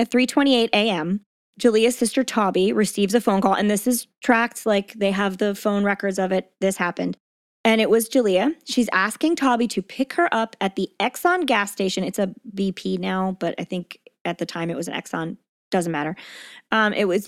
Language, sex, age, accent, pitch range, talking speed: English, female, 20-39, American, 195-250 Hz, 205 wpm